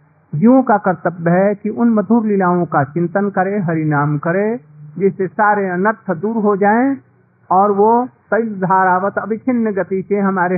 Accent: native